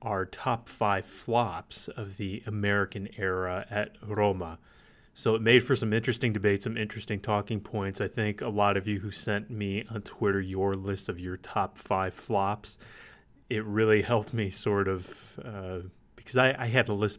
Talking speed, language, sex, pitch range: 180 wpm, English, male, 95-115 Hz